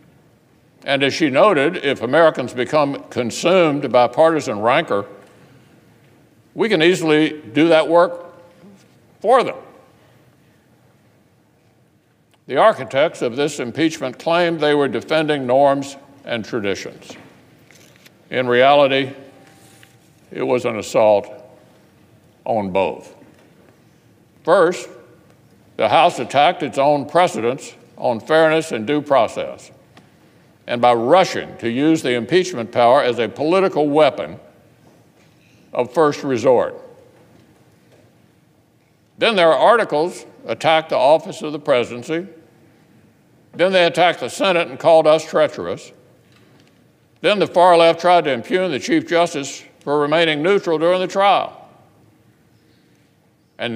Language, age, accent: English, 60-79, American